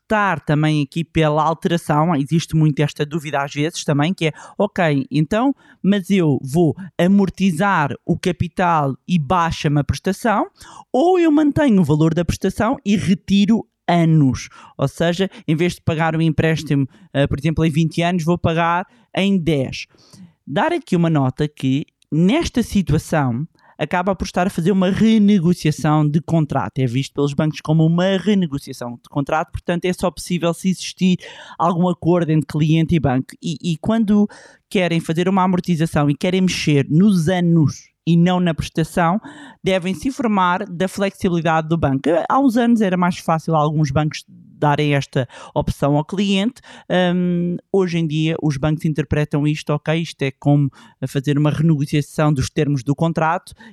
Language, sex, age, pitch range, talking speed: Portuguese, male, 20-39, 150-185 Hz, 160 wpm